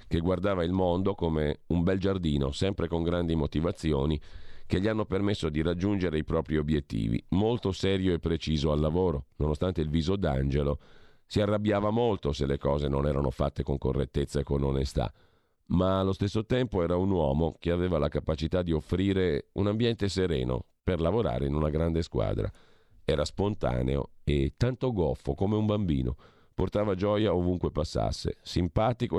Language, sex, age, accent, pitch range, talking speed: Italian, male, 50-69, native, 70-95 Hz, 165 wpm